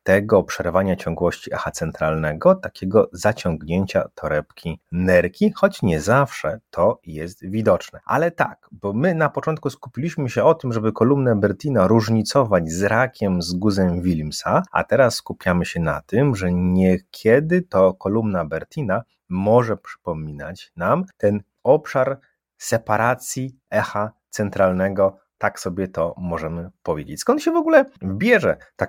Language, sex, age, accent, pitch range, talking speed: Polish, male, 30-49, native, 85-125 Hz, 135 wpm